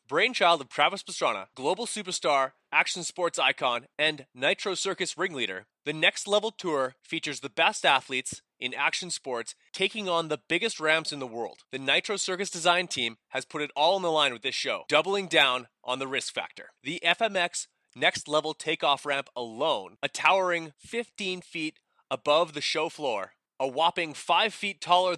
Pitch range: 140-185 Hz